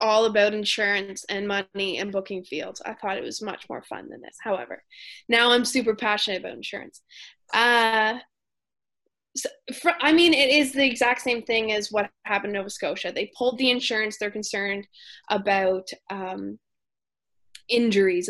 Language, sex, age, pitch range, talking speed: English, female, 20-39, 205-250 Hz, 165 wpm